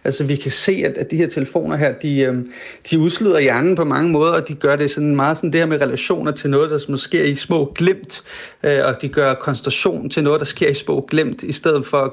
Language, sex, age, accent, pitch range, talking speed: Danish, male, 30-49, native, 130-155 Hz, 240 wpm